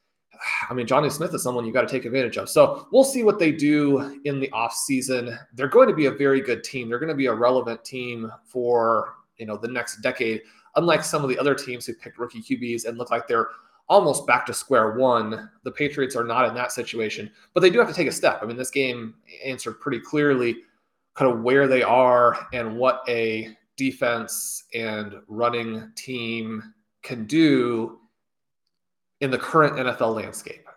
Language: English